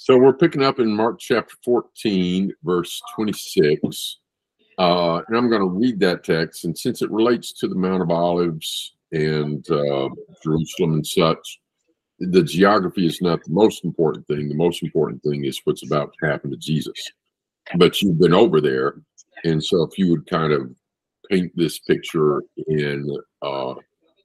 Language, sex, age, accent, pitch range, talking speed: English, male, 50-69, American, 75-90 Hz, 170 wpm